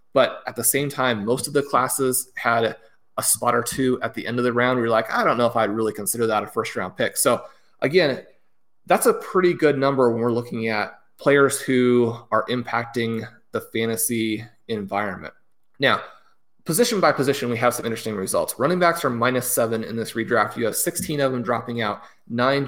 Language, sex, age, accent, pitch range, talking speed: English, male, 30-49, American, 115-140 Hz, 205 wpm